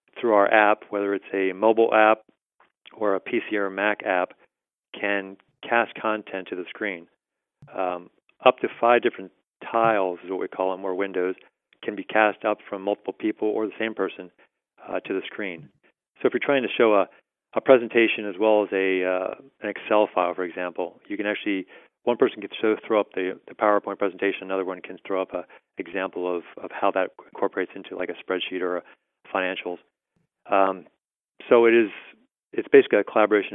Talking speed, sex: 190 wpm, male